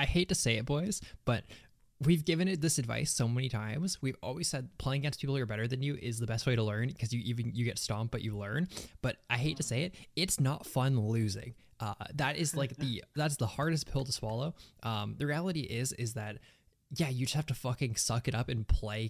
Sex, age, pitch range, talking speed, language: male, 20-39, 110-145 Hz, 250 wpm, English